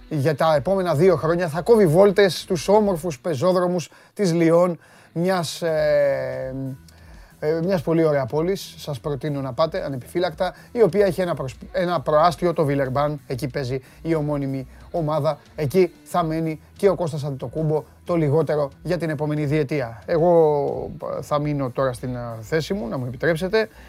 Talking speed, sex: 155 wpm, male